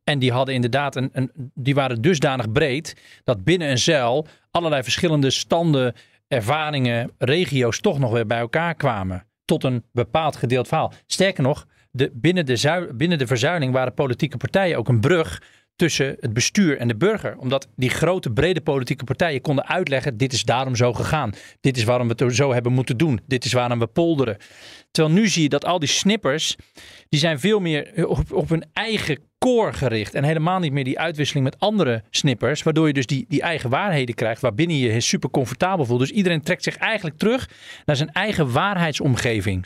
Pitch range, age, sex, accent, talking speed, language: 125-165 Hz, 40-59, male, Dutch, 195 wpm, Dutch